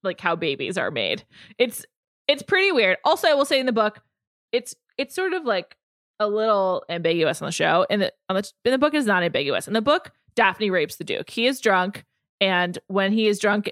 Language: English